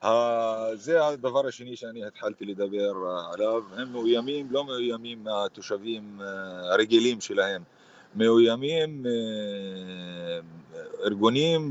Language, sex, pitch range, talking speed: Hebrew, male, 110-135 Hz, 80 wpm